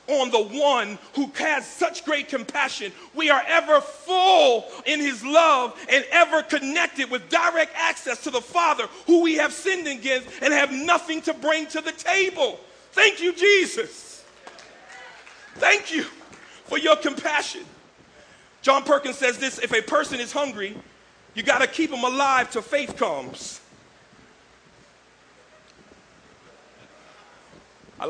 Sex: male